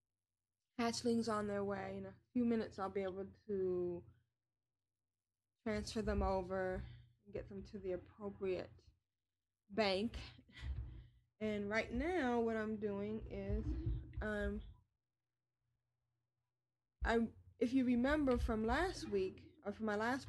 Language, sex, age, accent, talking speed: English, female, 20-39, American, 120 wpm